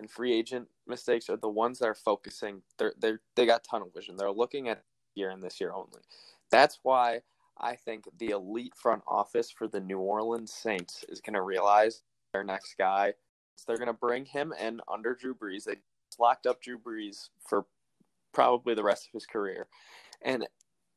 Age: 20-39